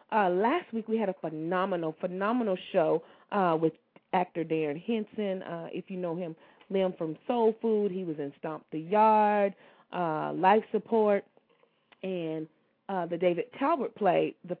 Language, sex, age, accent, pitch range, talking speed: English, female, 30-49, American, 165-210 Hz, 160 wpm